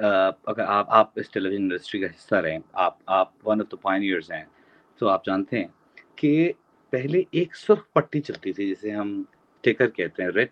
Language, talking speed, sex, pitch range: Urdu, 195 wpm, male, 115-180 Hz